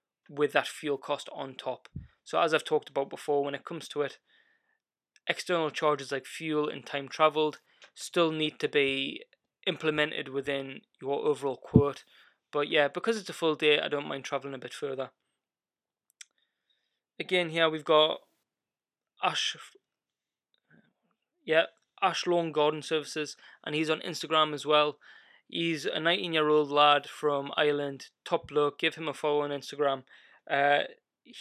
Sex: male